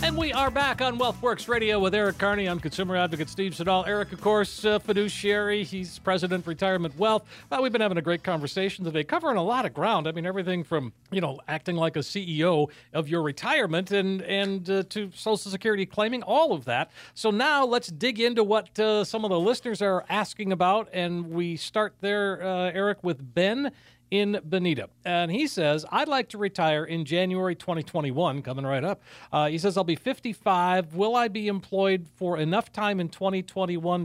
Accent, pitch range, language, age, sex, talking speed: American, 160-205 Hz, English, 40-59, male, 200 wpm